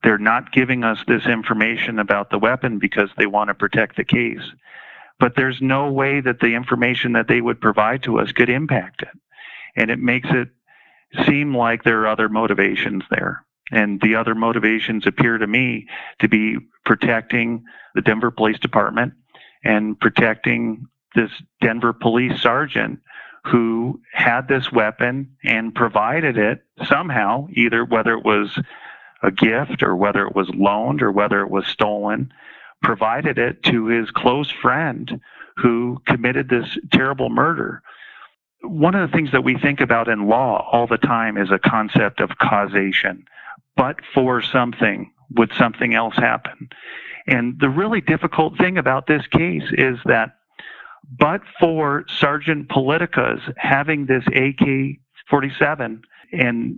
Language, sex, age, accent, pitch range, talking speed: English, male, 40-59, American, 110-135 Hz, 150 wpm